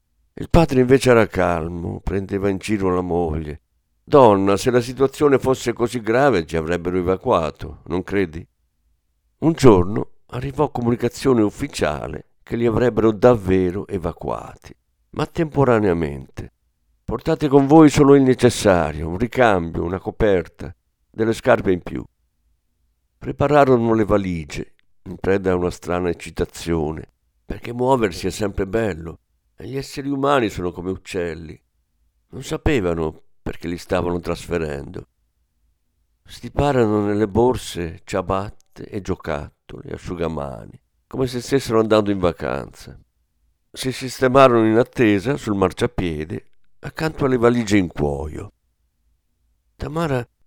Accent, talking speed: native, 120 wpm